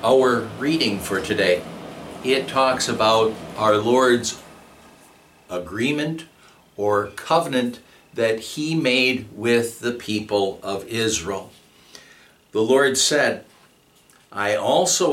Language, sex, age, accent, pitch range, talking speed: English, male, 60-79, American, 110-145 Hz, 100 wpm